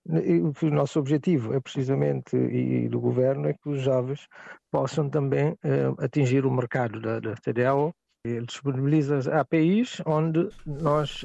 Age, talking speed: 50-69, 140 wpm